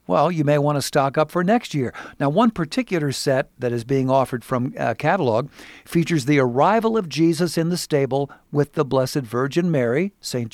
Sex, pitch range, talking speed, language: male, 130-160 Hz, 200 wpm, English